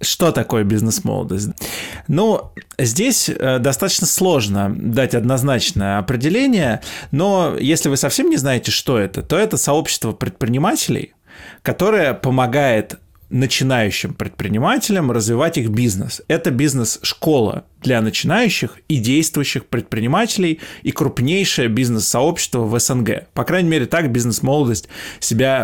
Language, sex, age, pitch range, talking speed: Russian, male, 20-39, 115-150 Hz, 110 wpm